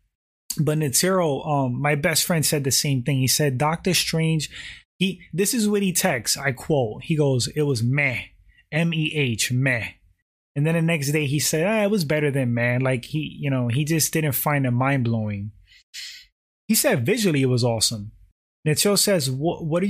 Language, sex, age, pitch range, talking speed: English, male, 20-39, 130-180 Hz, 190 wpm